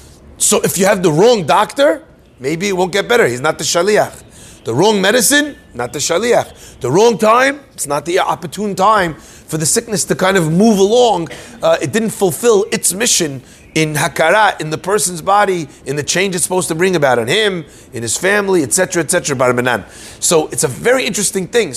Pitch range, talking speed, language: 155-205 Hz, 195 wpm, English